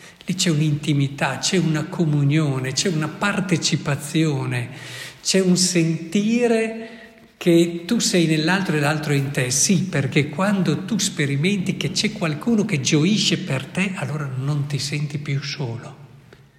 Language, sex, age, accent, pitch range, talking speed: Italian, male, 50-69, native, 135-170 Hz, 135 wpm